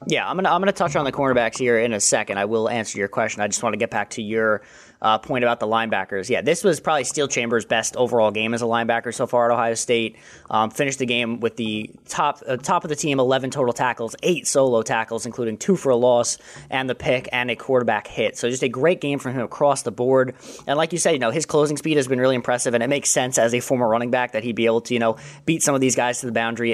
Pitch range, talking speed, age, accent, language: 115-135 Hz, 280 wpm, 20-39, American, English